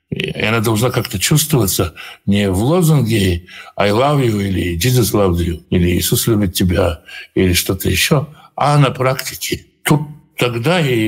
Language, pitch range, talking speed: Russian, 100-150 Hz, 150 wpm